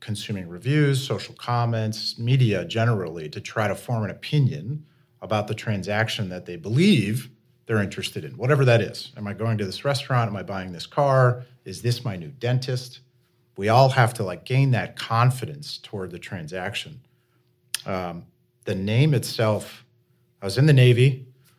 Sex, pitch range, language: male, 100-130 Hz, English